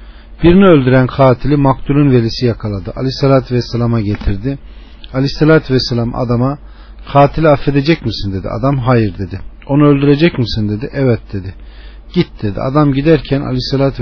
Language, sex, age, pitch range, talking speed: Turkish, male, 40-59, 105-135 Hz, 130 wpm